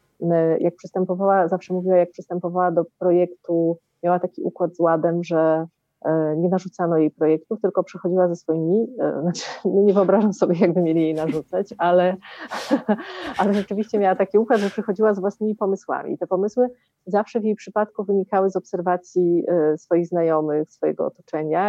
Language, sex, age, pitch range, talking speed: Polish, female, 30-49, 160-190 Hz, 155 wpm